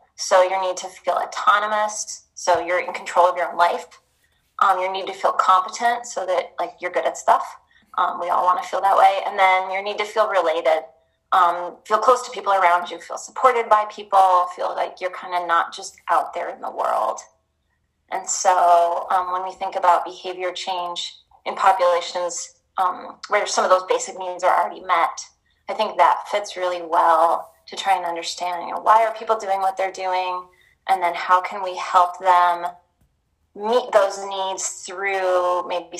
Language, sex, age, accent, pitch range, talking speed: English, female, 20-39, American, 175-195 Hz, 195 wpm